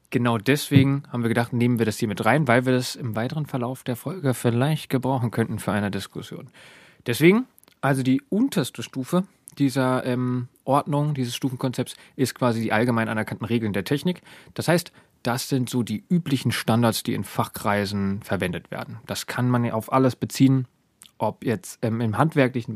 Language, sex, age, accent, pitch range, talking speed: German, male, 30-49, German, 105-135 Hz, 180 wpm